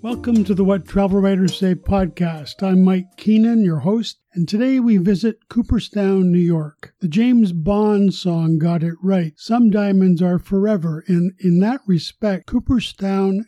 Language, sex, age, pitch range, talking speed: English, male, 50-69, 175-210 Hz, 160 wpm